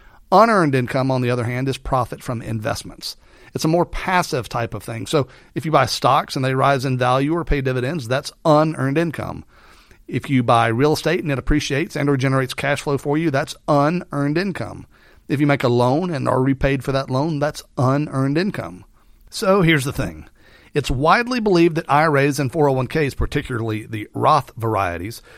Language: English